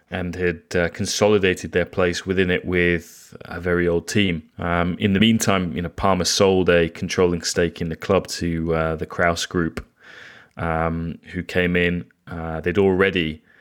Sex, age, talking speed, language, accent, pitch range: male, 20-39, 170 wpm, English, British, 85-95 Hz